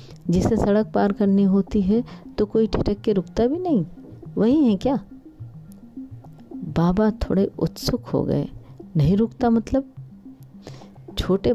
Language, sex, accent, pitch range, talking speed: Hindi, female, native, 155-205 Hz, 130 wpm